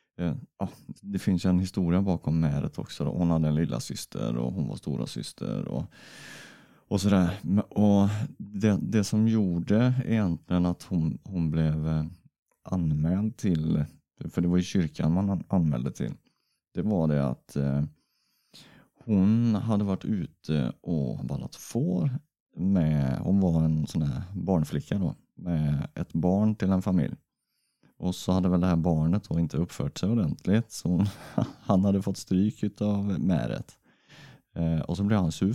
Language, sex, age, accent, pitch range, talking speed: Swedish, male, 30-49, native, 80-100 Hz, 155 wpm